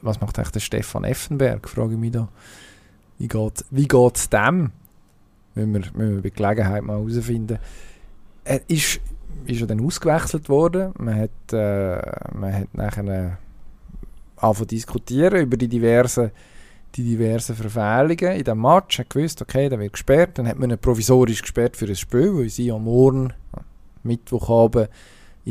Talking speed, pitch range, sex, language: 150 wpm, 105-135 Hz, male, German